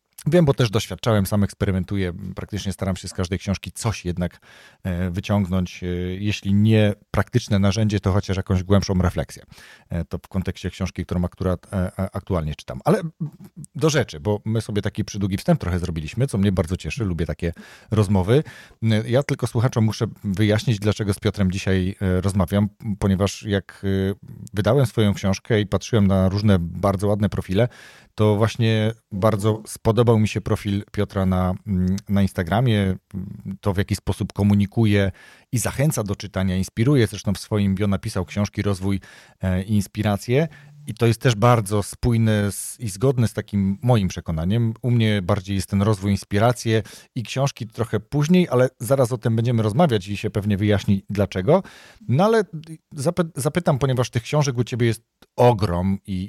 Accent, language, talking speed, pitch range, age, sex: native, Polish, 155 wpm, 95-115 Hz, 40-59, male